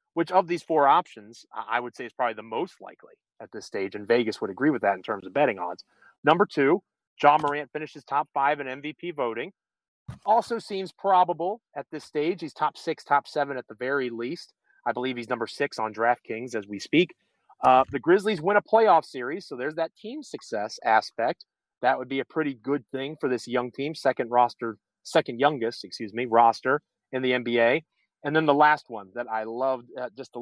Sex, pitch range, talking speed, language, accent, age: male, 120-165 Hz, 210 wpm, English, American, 30-49